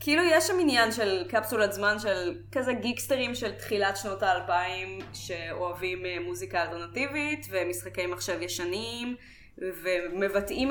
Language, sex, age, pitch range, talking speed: Hebrew, female, 20-39, 175-230 Hz, 120 wpm